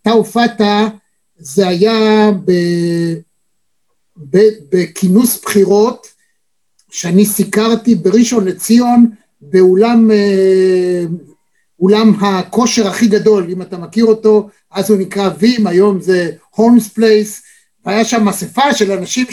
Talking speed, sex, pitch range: 95 wpm, male, 195-245 Hz